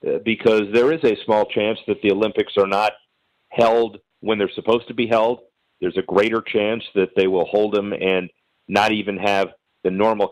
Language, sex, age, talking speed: English, male, 50-69, 190 wpm